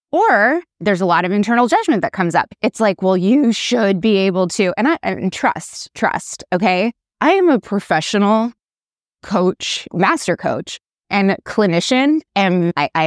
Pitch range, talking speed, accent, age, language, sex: 180-235 Hz, 165 wpm, American, 20-39, English, female